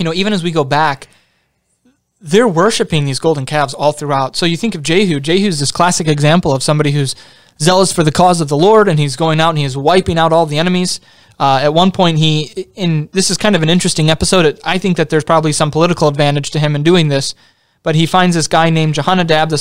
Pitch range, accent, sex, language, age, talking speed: 150-185 Hz, American, male, English, 20-39, 245 wpm